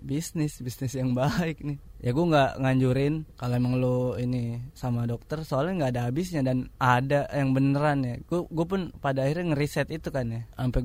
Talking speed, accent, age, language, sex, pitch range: 185 wpm, native, 20-39, Indonesian, male, 125-145 Hz